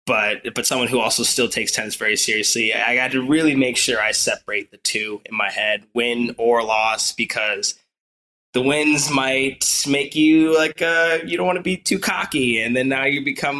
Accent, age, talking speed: American, 20-39, 205 wpm